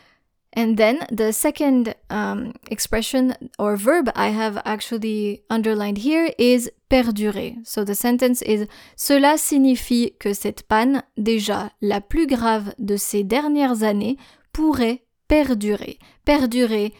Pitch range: 215-265 Hz